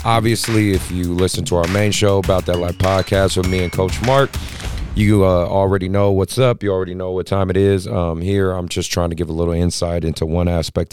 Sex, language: male, English